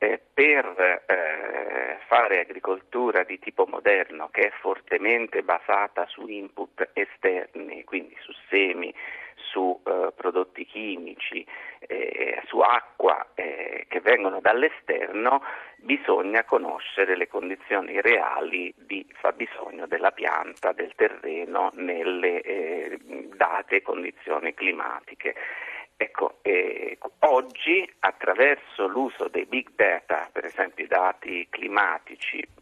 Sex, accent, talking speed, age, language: male, native, 105 wpm, 50-69, Italian